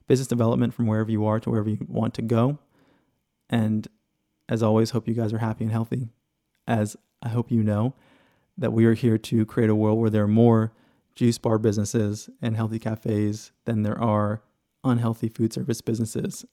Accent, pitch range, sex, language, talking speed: American, 110-120 Hz, male, English, 190 wpm